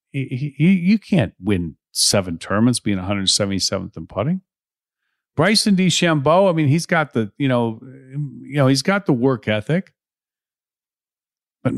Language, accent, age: English, American, 50-69